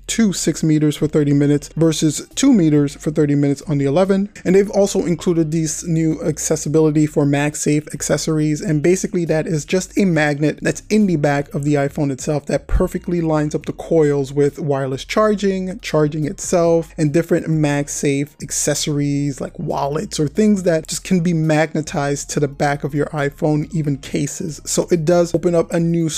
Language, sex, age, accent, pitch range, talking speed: English, male, 20-39, American, 150-175 Hz, 180 wpm